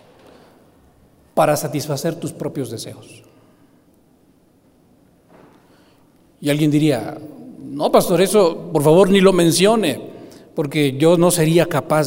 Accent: Mexican